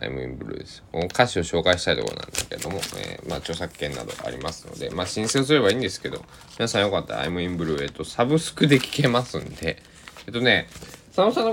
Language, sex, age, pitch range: Japanese, male, 20-39, 80-130 Hz